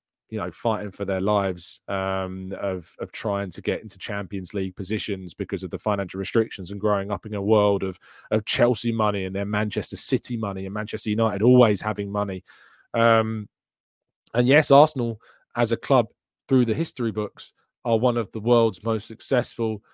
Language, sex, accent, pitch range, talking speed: English, male, British, 105-125 Hz, 180 wpm